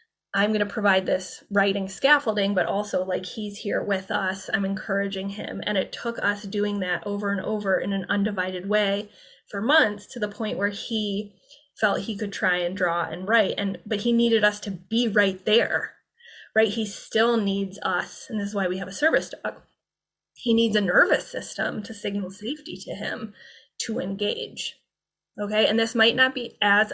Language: English